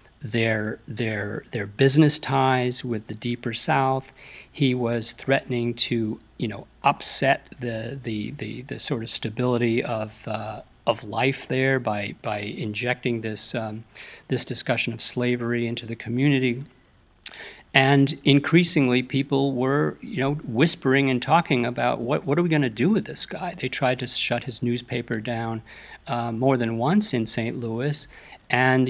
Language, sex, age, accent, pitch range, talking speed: English, male, 50-69, American, 120-135 Hz, 155 wpm